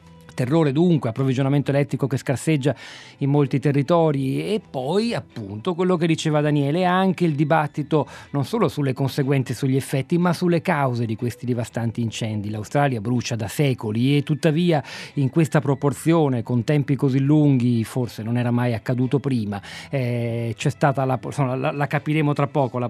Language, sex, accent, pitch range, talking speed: Italian, male, native, 115-145 Hz, 160 wpm